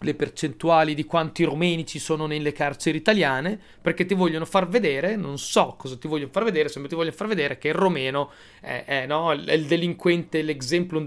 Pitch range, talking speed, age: 125-170 Hz, 205 wpm, 30-49